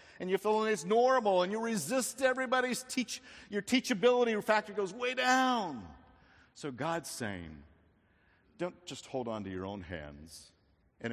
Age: 50-69